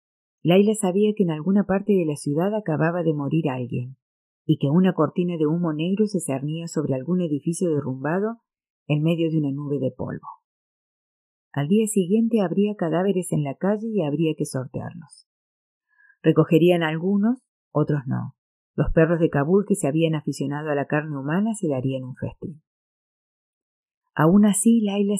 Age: 40-59